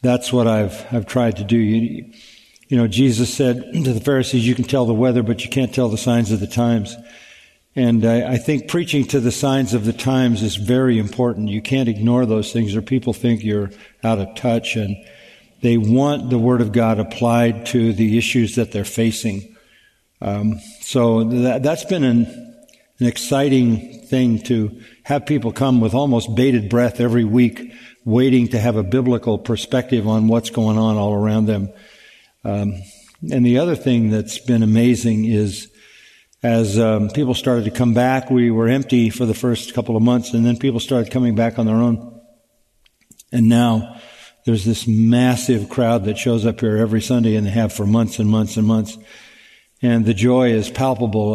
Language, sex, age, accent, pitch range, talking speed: English, male, 50-69, American, 110-125 Hz, 190 wpm